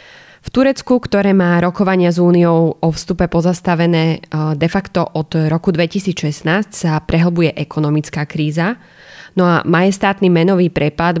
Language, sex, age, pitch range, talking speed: Slovak, female, 20-39, 155-185 Hz, 130 wpm